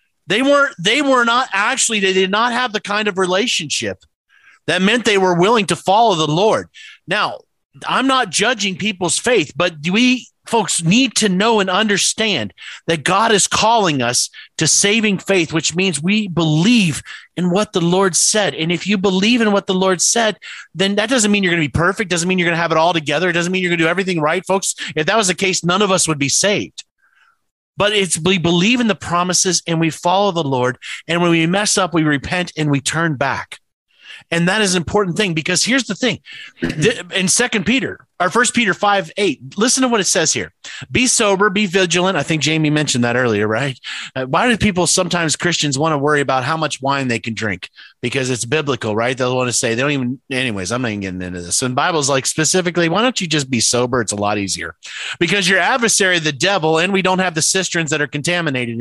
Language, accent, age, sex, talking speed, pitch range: English, American, 40-59, male, 225 wpm, 150-205 Hz